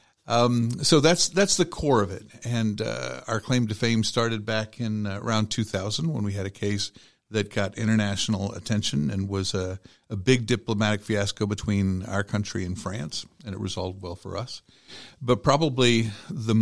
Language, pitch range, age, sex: English, 100-120 Hz, 50-69, male